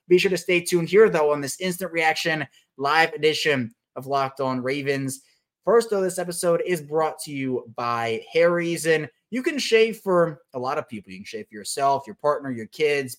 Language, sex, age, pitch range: English, male, 20-39, 130-170 Hz